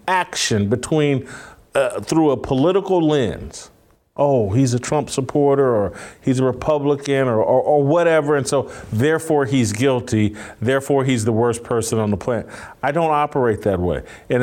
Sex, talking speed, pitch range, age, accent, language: male, 160 wpm, 115-150 Hz, 40-59, American, English